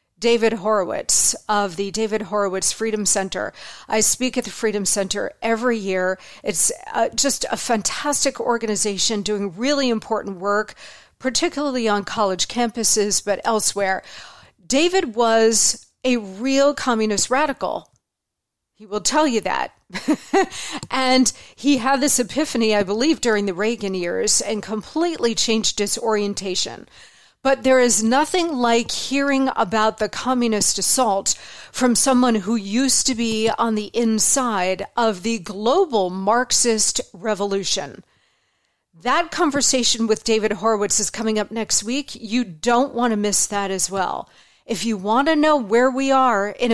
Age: 40-59